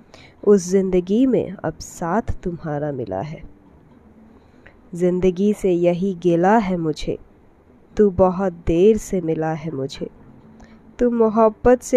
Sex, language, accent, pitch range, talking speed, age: female, Hindi, native, 165-220 Hz, 115 wpm, 20-39